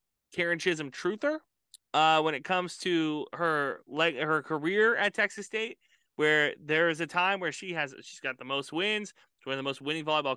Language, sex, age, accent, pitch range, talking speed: English, male, 20-39, American, 150-215 Hz, 205 wpm